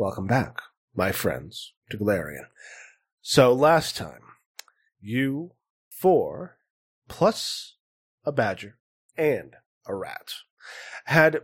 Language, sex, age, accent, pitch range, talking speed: English, male, 30-49, American, 110-135 Hz, 95 wpm